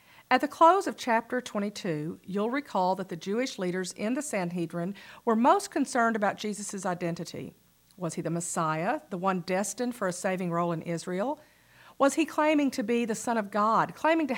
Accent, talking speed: American, 190 wpm